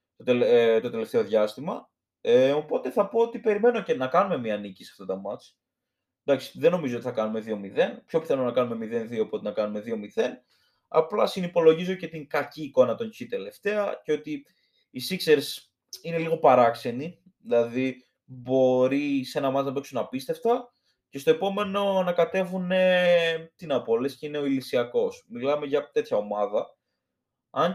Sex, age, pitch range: male, 20-39, 140-225 Hz